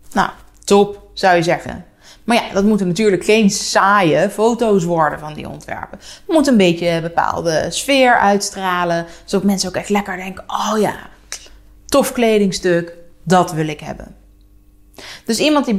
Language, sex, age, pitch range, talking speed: Dutch, female, 30-49, 175-225 Hz, 160 wpm